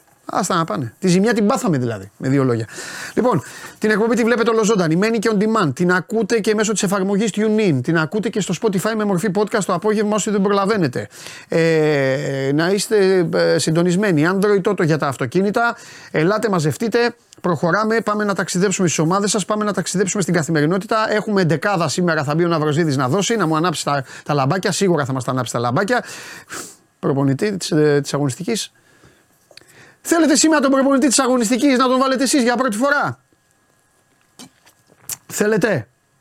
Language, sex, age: Greek, male, 30-49